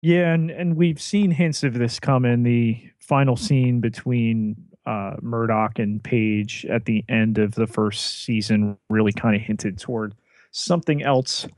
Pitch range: 110-140 Hz